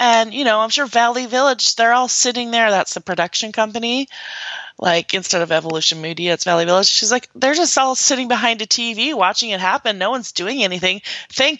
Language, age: English, 30-49